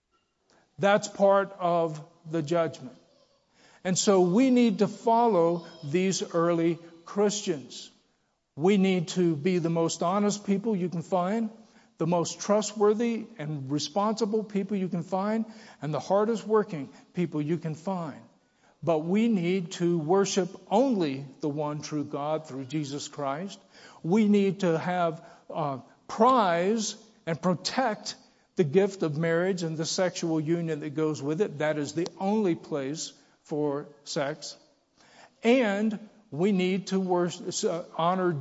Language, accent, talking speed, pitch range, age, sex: English, American, 135 wpm, 160-205 Hz, 50-69, male